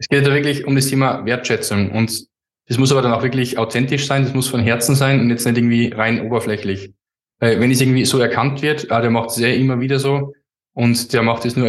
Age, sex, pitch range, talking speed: 10-29, male, 115-130 Hz, 245 wpm